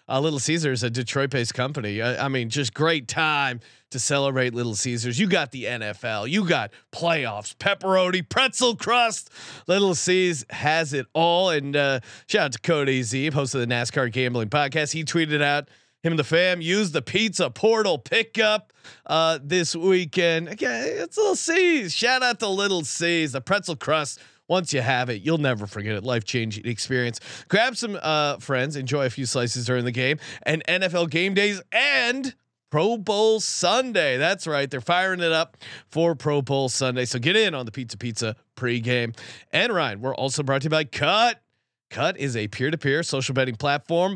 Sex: male